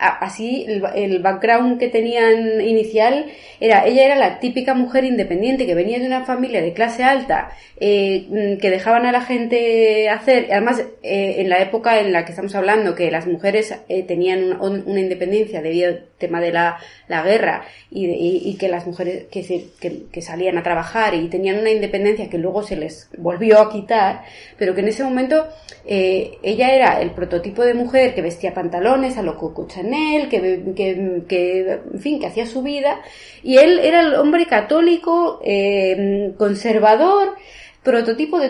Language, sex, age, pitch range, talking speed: Spanish, female, 20-39, 185-250 Hz, 180 wpm